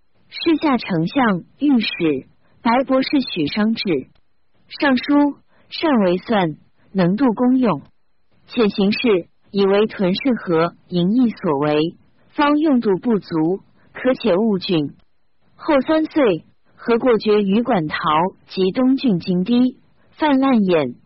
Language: Chinese